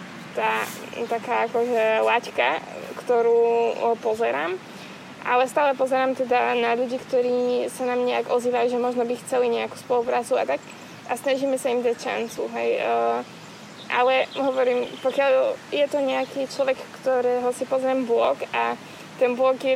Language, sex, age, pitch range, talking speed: Slovak, female, 20-39, 220-250 Hz, 140 wpm